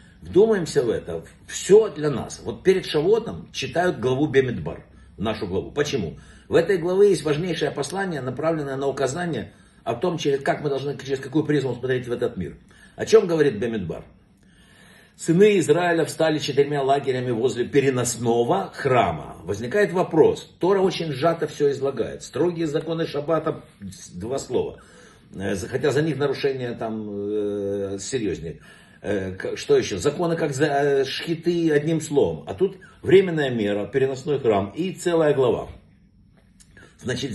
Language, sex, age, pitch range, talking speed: Russian, male, 60-79, 135-170 Hz, 130 wpm